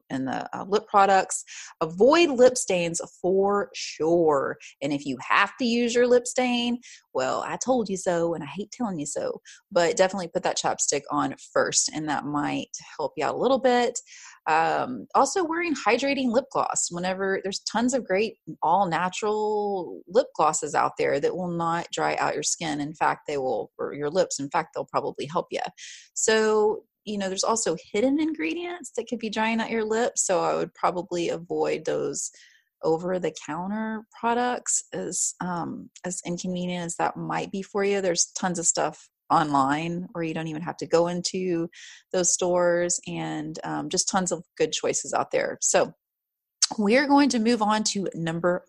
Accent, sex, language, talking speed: American, female, English, 180 wpm